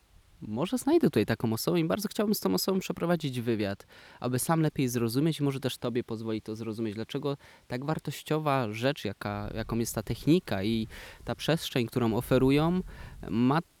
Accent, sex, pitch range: native, male, 110-145 Hz